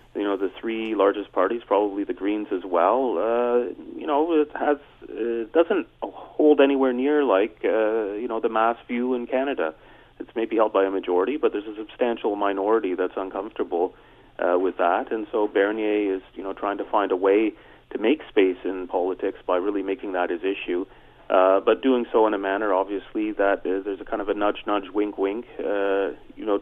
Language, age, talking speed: English, 30-49, 200 wpm